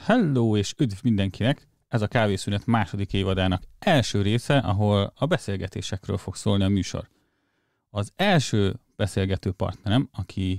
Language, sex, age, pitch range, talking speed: Hungarian, male, 30-49, 95-125 Hz, 130 wpm